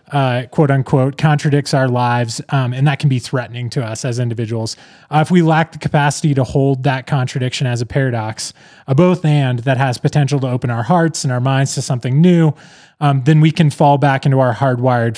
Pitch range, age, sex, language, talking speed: 120-150 Hz, 20-39, male, English, 215 wpm